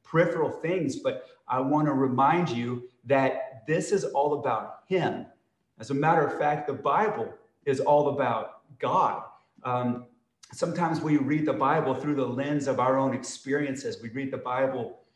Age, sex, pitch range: 30-49, male, 125-150 Hz